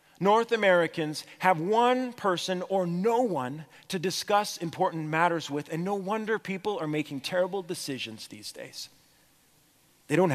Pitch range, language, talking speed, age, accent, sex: 160-210 Hz, English, 145 wpm, 40-59, American, male